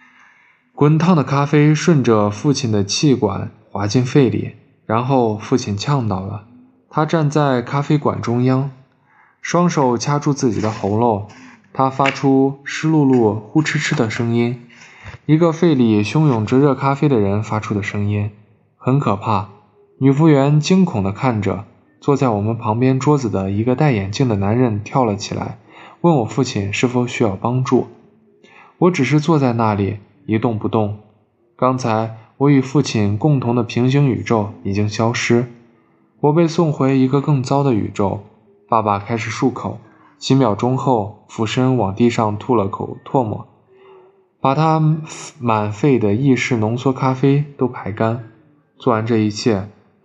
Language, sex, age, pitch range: Chinese, male, 20-39, 110-140 Hz